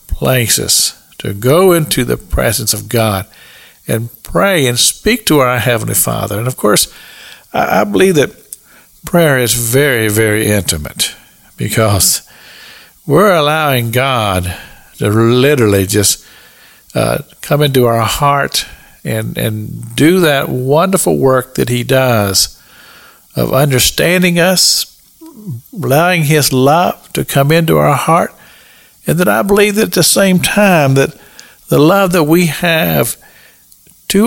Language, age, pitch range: English, 50-69, 110-165 Hz